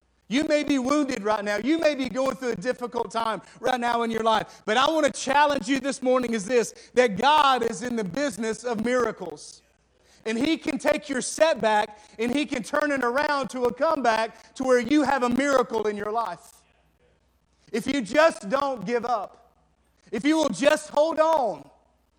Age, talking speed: 40-59, 195 wpm